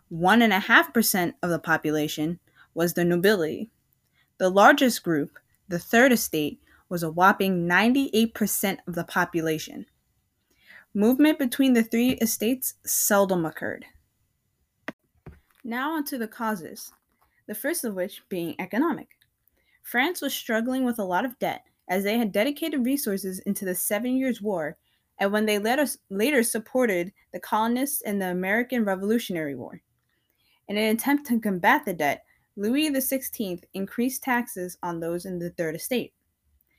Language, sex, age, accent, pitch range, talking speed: English, female, 20-39, American, 180-245 Hz, 145 wpm